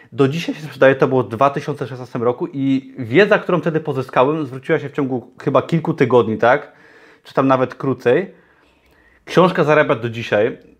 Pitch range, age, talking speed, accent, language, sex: 130-155 Hz, 30-49, 165 wpm, native, Polish, male